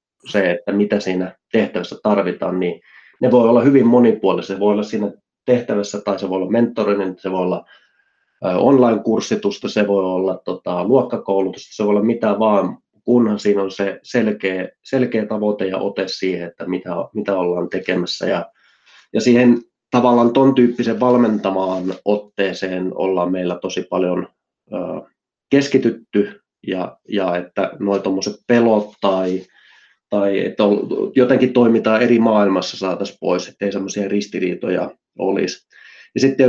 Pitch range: 95-115 Hz